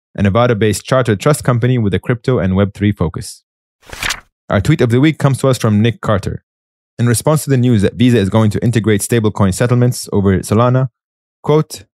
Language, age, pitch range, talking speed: English, 20-39, 100-130 Hz, 190 wpm